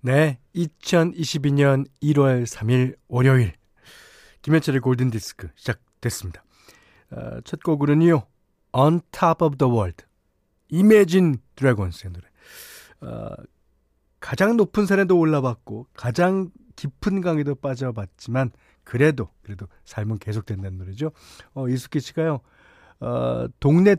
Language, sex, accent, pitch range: Korean, male, native, 110-160 Hz